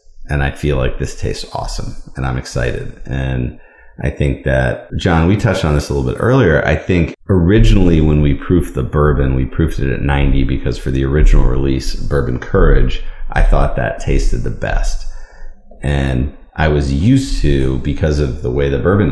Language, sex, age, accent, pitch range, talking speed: English, male, 40-59, American, 65-85 Hz, 190 wpm